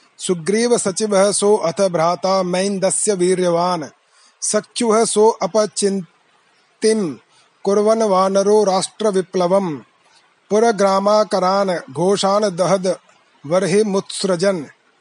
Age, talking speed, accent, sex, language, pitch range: 30-49, 55 wpm, native, male, Hindi, 185-210 Hz